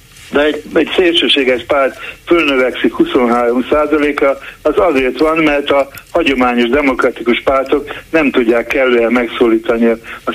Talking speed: 120 wpm